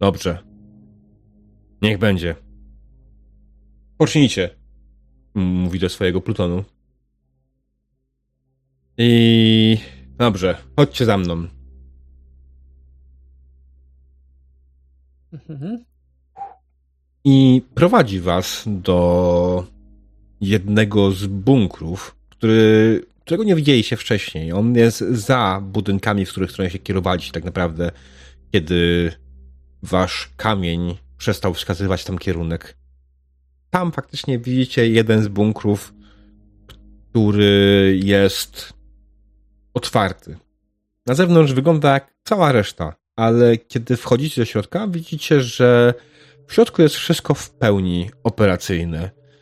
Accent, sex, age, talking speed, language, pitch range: native, male, 30-49, 85 wpm, Polish, 85-120 Hz